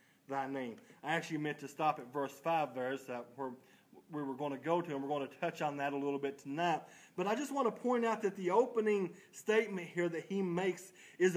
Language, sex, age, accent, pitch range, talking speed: English, male, 40-59, American, 175-210 Hz, 250 wpm